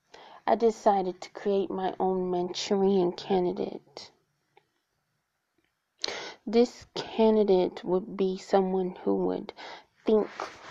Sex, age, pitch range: female, 20-39, 180-205 Hz